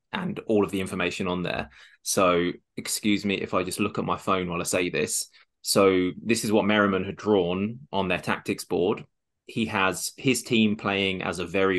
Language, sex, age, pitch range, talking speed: English, male, 20-39, 90-110 Hz, 205 wpm